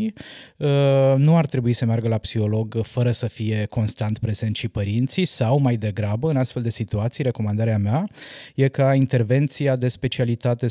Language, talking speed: Romanian, 155 wpm